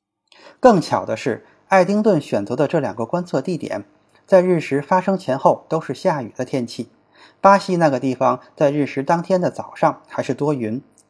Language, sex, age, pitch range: Chinese, male, 20-39, 130-180 Hz